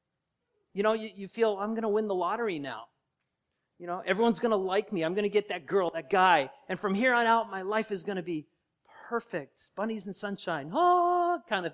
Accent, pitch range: American, 170-215 Hz